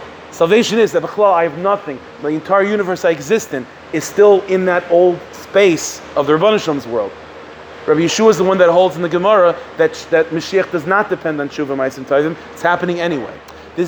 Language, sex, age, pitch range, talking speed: English, male, 30-49, 155-195 Hz, 200 wpm